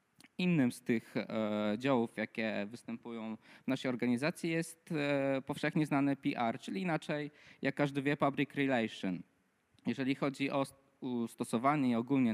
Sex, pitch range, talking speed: male, 120-175 Hz, 125 wpm